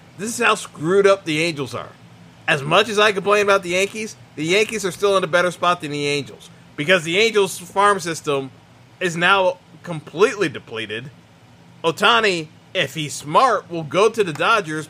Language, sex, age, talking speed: English, male, 30-49, 180 wpm